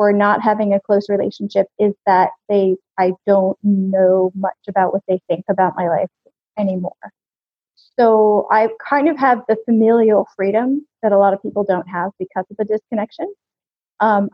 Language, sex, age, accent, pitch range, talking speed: English, female, 30-49, American, 195-230 Hz, 170 wpm